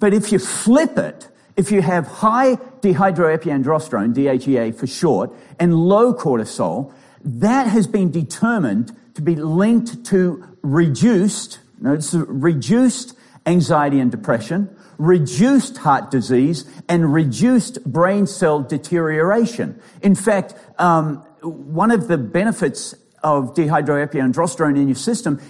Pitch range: 145-195 Hz